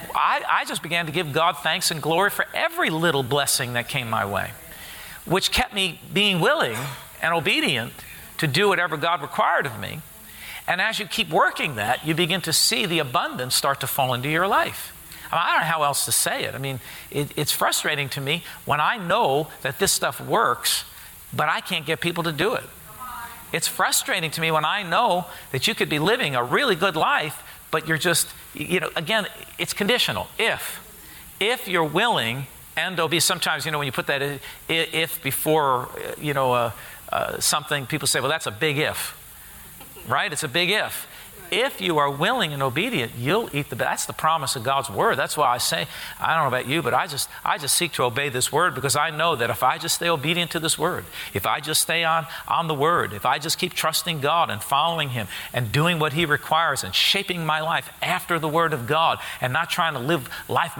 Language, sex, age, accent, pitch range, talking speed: English, male, 50-69, American, 140-175 Hz, 215 wpm